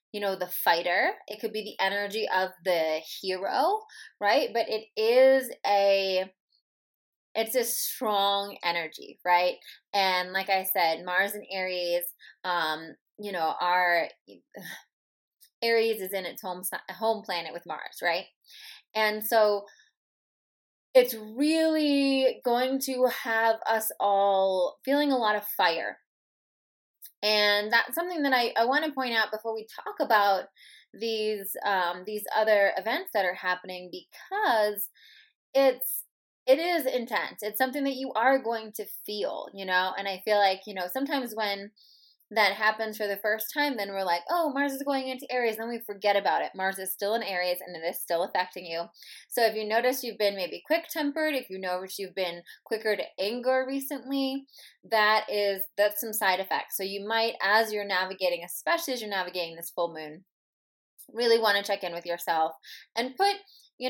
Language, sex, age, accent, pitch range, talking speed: English, female, 20-39, American, 190-250 Hz, 170 wpm